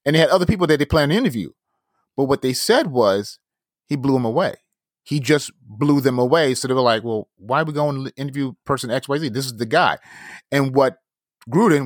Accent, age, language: American, 30-49, English